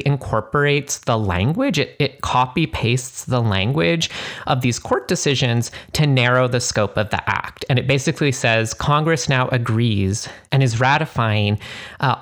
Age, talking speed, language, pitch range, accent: 30-49, 150 wpm, English, 115-140 Hz, American